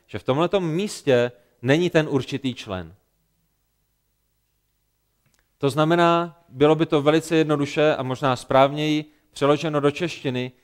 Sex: male